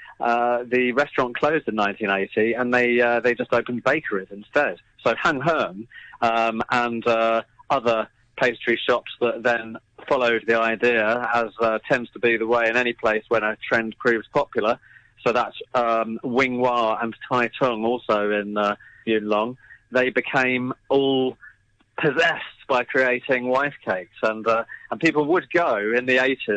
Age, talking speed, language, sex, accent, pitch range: 30-49, 165 wpm, English, male, British, 110-125 Hz